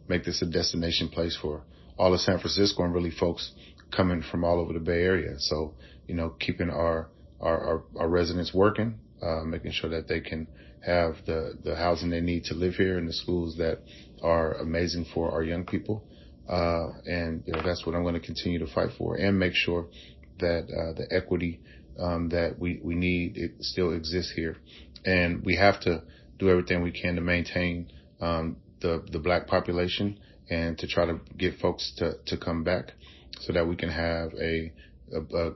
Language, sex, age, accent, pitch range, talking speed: English, male, 30-49, American, 80-90 Hz, 195 wpm